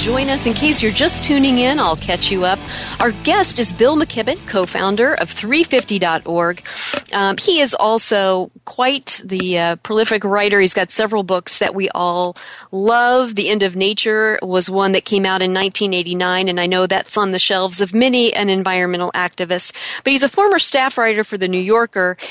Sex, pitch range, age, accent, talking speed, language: female, 185-230 Hz, 40-59, American, 185 wpm, English